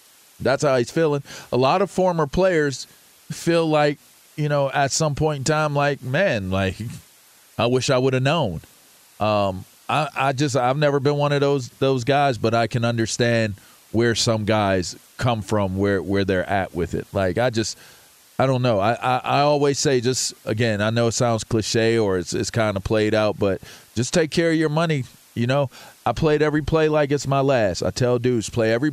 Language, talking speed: English, 210 wpm